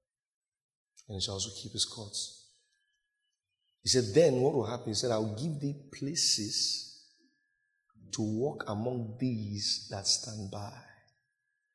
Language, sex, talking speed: English, male, 140 wpm